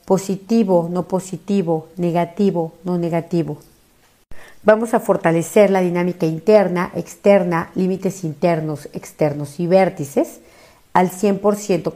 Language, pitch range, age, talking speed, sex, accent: Spanish, 165-195 Hz, 50-69, 100 wpm, female, Mexican